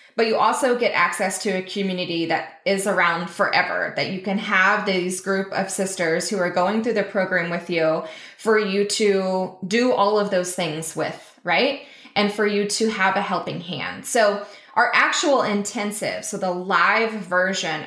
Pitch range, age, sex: 185-220 Hz, 20-39, female